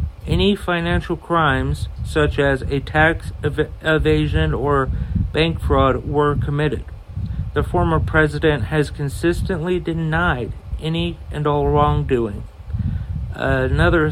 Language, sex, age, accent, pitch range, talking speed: English, male, 50-69, American, 130-145 Hz, 100 wpm